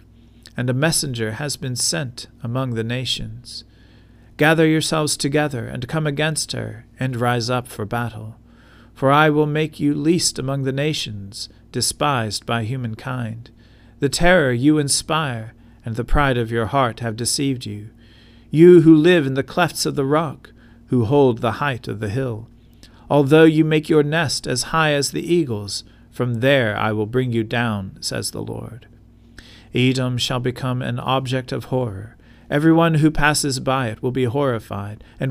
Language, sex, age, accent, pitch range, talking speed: English, male, 40-59, American, 115-135 Hz, 165 wpm